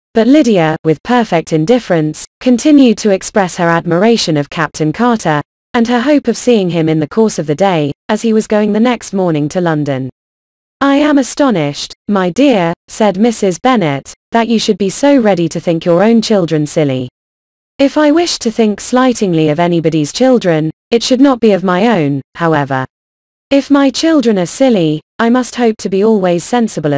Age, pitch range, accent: 20-39, 155-240 Hz, British